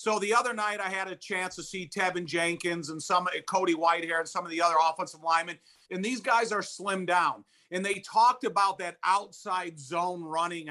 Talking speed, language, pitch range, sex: 205 wpm, English, 170-195 Hz, male